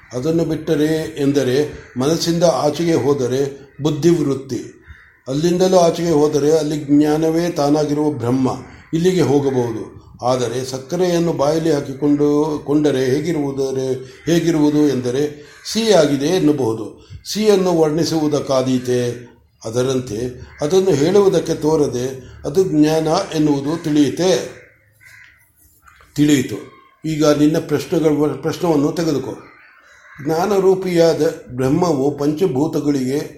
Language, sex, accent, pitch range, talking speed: Kannada, male, native, 135-165 Hz, 85 wpm